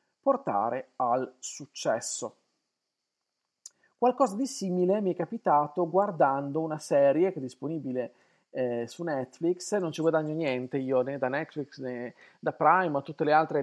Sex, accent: male, native